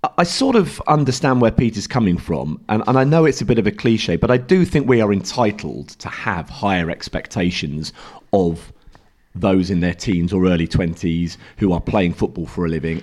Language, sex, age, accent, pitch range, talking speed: English, male, 40-59, British, 90-125 Hz, 205 wpm